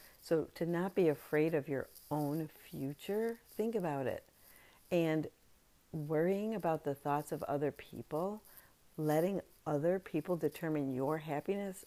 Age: 50-69